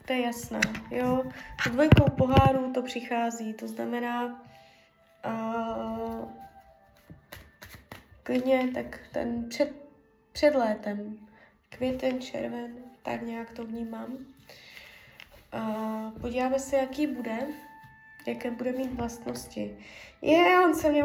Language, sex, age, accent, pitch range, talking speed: Czech, female, 20-39, native, 220-265 Hz, 105 wpm